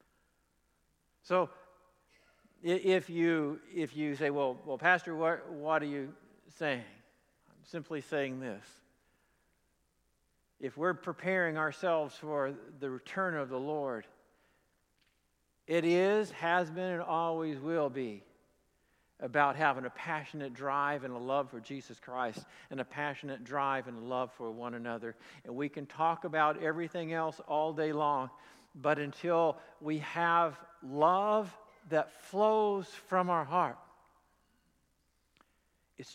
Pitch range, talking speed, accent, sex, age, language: 130-180 Hz, 130 wpm, American, male, 50-69, English